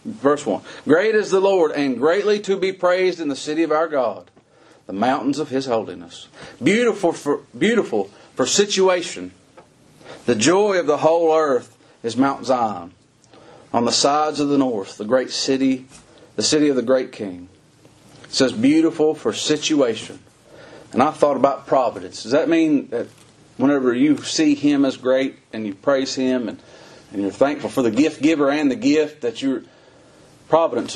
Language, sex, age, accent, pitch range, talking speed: English, male, 40-59, American, 130-190 Hz, 170 wpm